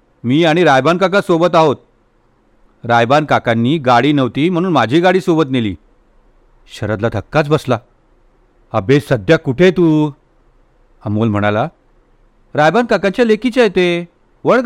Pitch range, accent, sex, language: 115-170 Hz, native, male, Hindi